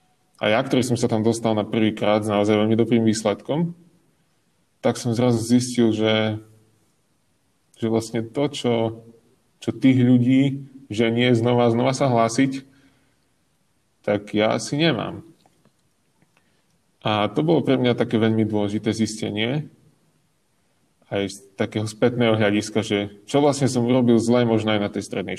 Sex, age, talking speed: male, 20-39, 145 wpm